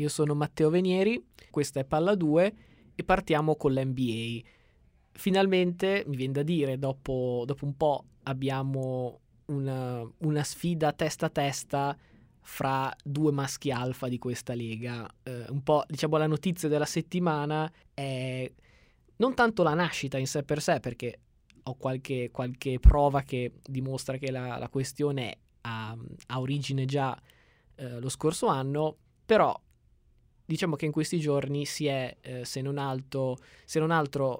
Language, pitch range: Italian, 125-155 Hz